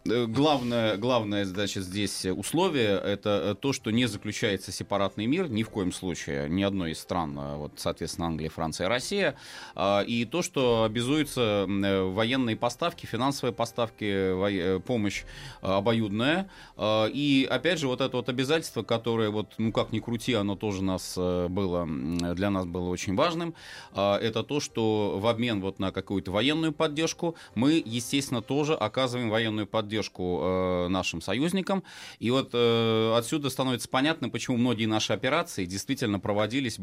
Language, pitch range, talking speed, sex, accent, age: Russian, 95-125 Hz, 140 wpm, male, native, 30-49